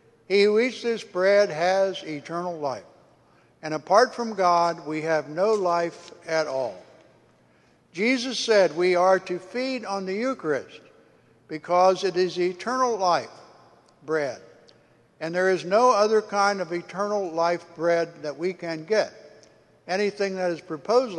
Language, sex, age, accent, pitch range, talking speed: English, male, 60-79, American, 165-210 Hz, 145 wpm